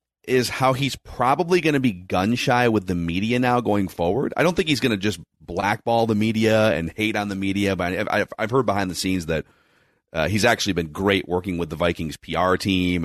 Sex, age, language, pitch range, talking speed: male, 30-49, English, 85-105 Hz, 220 wpm